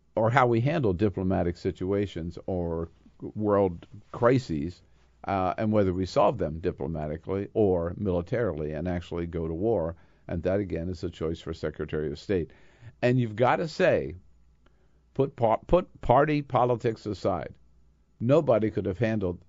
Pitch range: 85-120 Hz